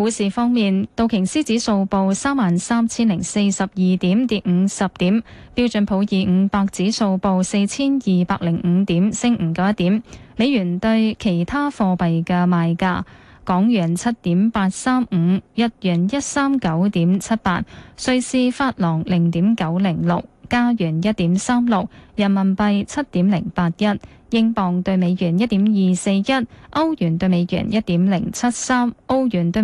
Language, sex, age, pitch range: Chinese, female, 20-39, 185-230 Hz